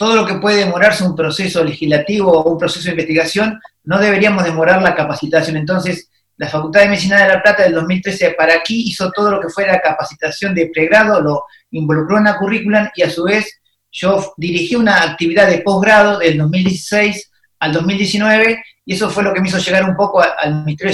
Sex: male